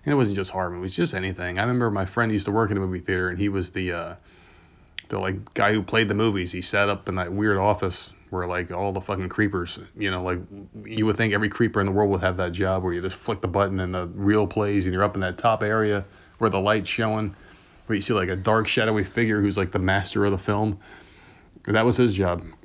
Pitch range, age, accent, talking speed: 90-105 Hz, 20-39, American, 265 wpm